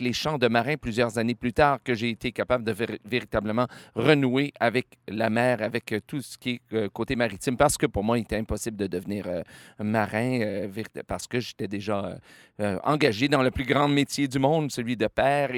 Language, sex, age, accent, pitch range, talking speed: French, male, 40-59, Canadian, 105-130 Hz, 220 wpm